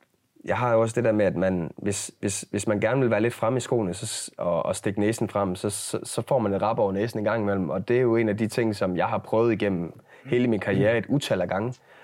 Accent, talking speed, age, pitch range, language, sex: native, 285 wpm, 20-39, 100-120 Hz, Danish, male